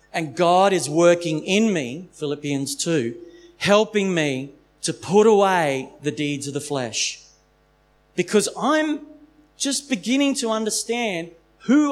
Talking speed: 125 wpm